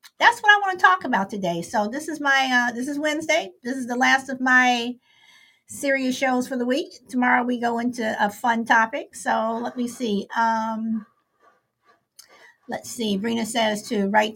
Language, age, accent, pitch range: English, 50-69, American, 200-275 Hz